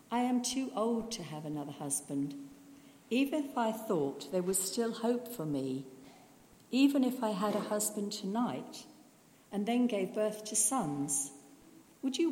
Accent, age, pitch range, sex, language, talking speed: British, 50-69, 160-235 Hz, female, English, 160 wpm